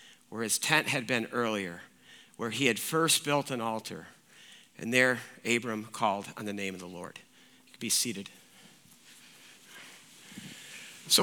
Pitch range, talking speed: 155-200 Hz, 150 wpm